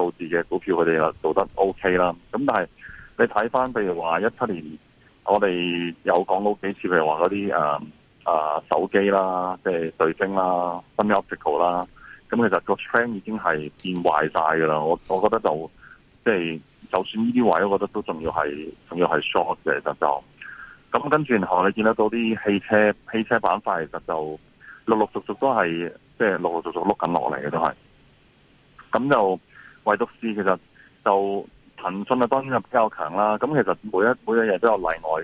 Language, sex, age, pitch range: Chinese, male, 30-49, 80-105 Hz